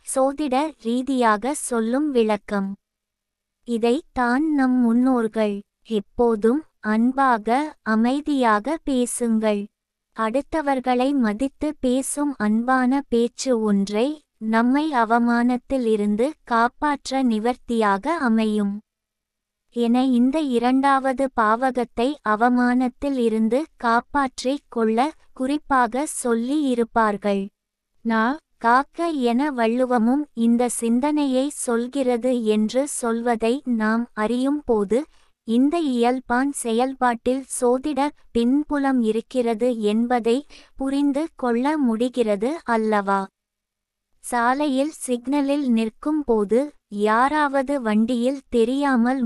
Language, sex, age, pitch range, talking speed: Tamil, female, 20-39, 225-270 Hz, 70 wpm